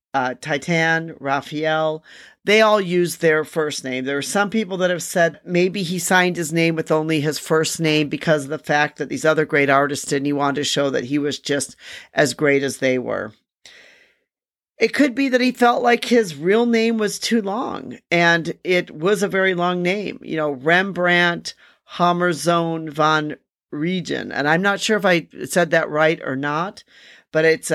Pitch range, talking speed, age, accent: 150-190 Hz, 190 wpm, 40-59, American